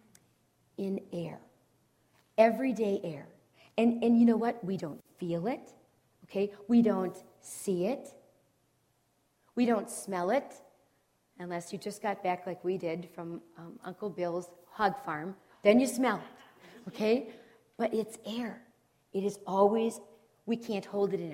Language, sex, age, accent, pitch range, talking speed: English, female, 40-59, American, 190-230 Hz, 145 wpm